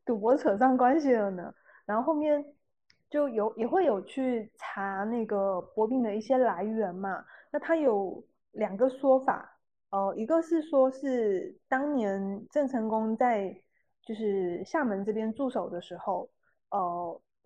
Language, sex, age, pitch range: Chinese, female, 20-39, 200-260 Hz